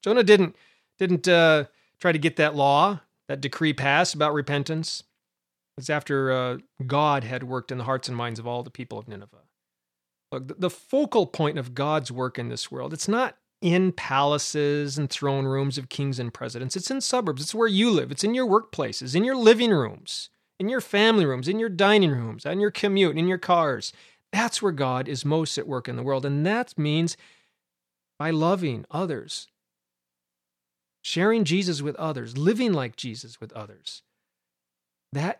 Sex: male